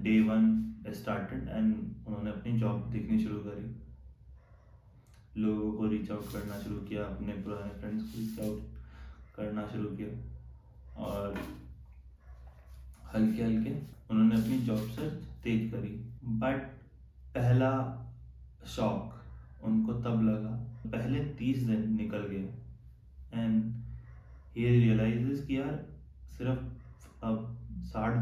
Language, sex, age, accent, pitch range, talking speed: Hindi, male, 20-39, native, 95-115 Hz, 105 wpm